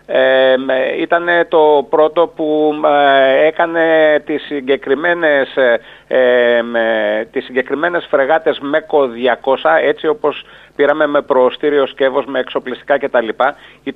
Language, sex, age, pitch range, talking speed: Greek, male, 40-59, 135-175 Hz, 110 wpm